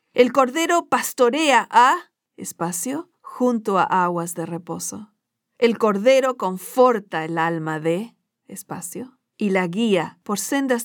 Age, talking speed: 50-69, 120 wpm